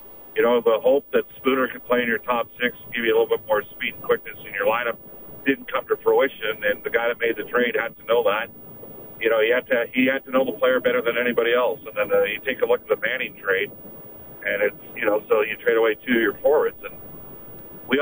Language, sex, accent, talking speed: English, male, American, 265 wpm